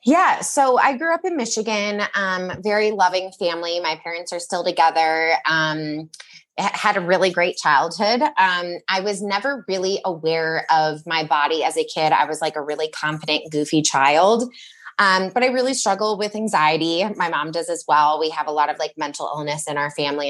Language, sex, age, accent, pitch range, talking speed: English, female, 20-39, American, 160-200 Hz, 190 wpm